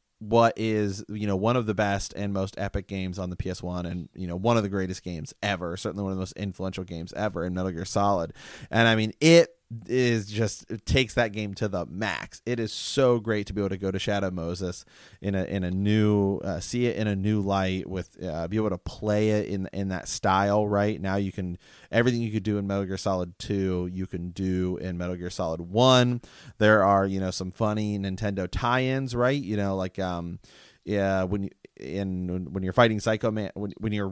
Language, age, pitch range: English, 30-49, 95-110 Hz